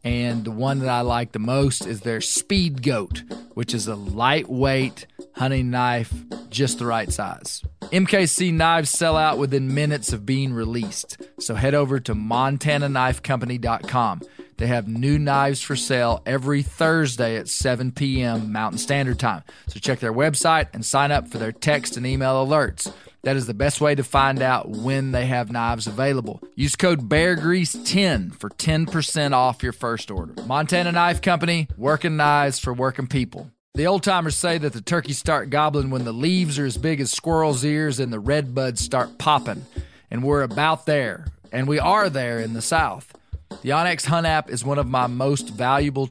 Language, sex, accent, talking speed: English, male, American, 180 wpm